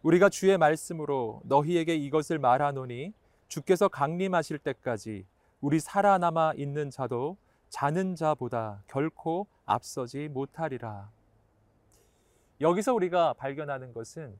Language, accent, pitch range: Korean, native, 115-165 Hz